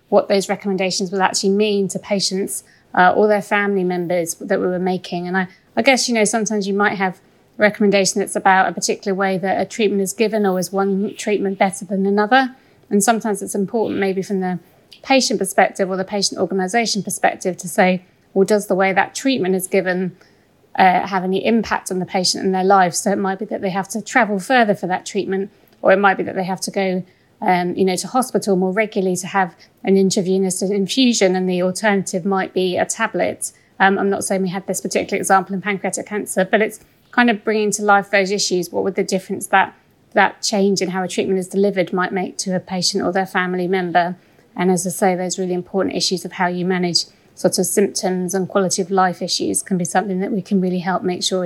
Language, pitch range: English, 185-205 Hz